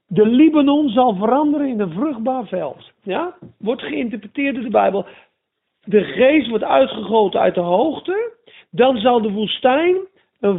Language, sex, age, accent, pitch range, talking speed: Dutch, male, 50-69, Dutch, 200-265 Hz, 145 wpm